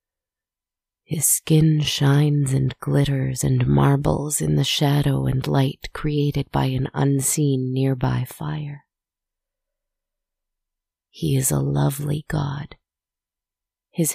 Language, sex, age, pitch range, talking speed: English, female, 30-49, 100-145 Hz, 100 wpm